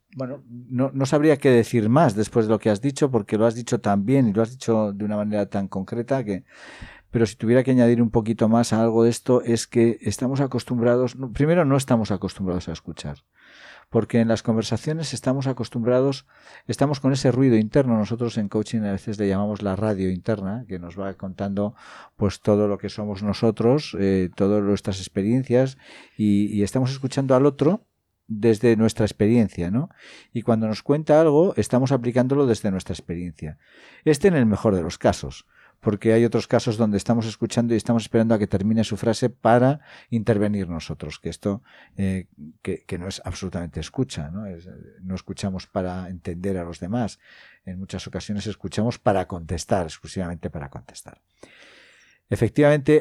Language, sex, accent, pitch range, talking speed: Spanish, male, Spanish, 100-120 Hz, 180 wpm